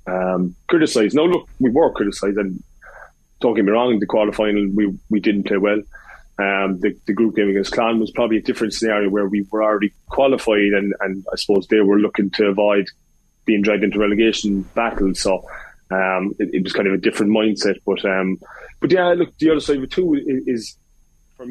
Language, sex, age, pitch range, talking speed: English, male, 20-39, 95-110 Hz, 210 wpm